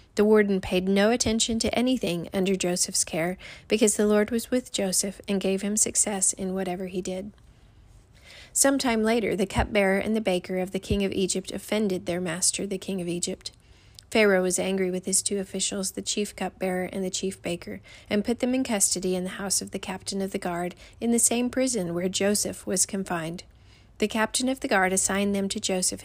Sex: female